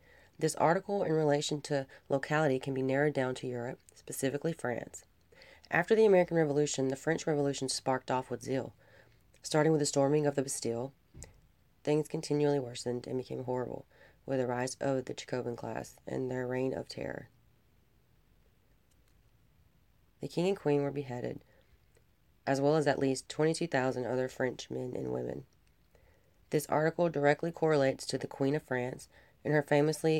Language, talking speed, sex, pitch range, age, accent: English, 155 wpm, female, 130-155 Hz, 30-49, American